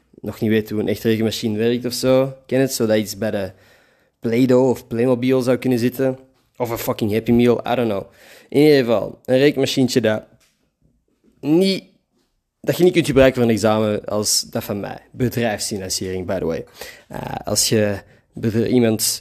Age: 20-39